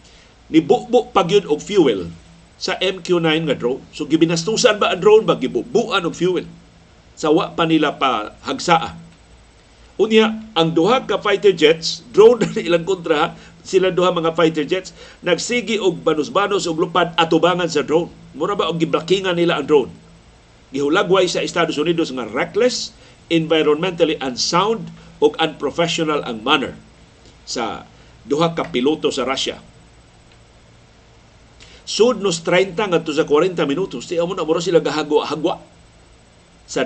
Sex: male